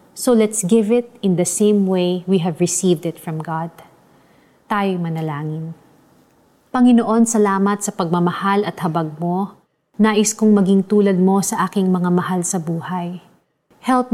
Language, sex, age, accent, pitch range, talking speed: Filipino, female, 30-49, native, 175-215 Hz, 150 wpm